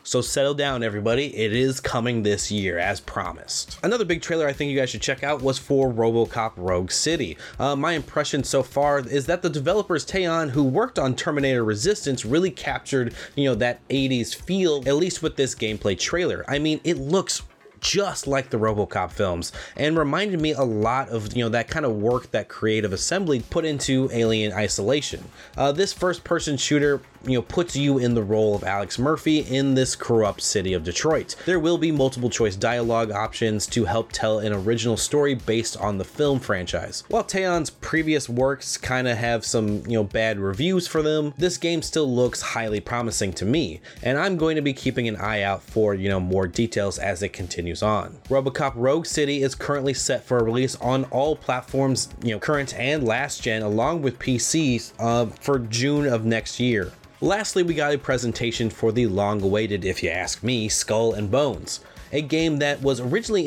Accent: American